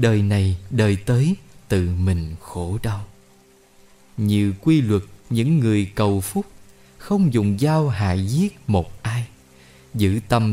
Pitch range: 95-125 Hz